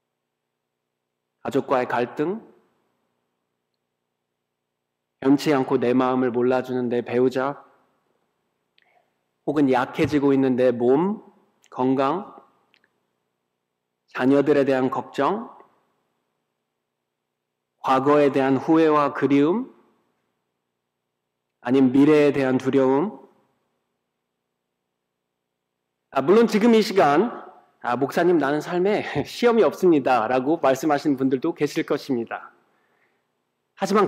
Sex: male